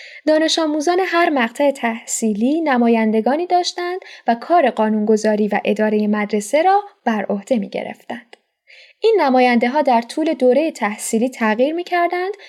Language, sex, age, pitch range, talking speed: Persian, female, 10-29, 215-310 Hz, 125 wpm